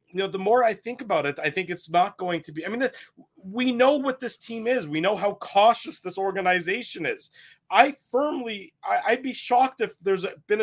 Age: 30-49